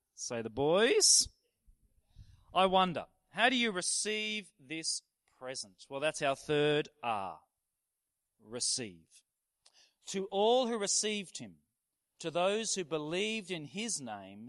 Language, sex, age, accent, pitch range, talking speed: English, male, 40-59, Australian, 120-185 Hz, 120 wpm